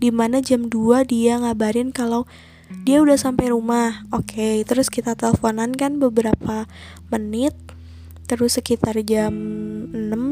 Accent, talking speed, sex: native, 120 wpm, female